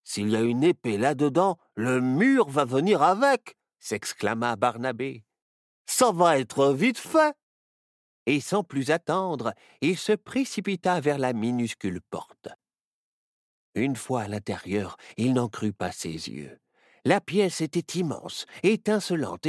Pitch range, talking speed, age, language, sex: 115-190 Hz, 135 wpm, 50-69, French, male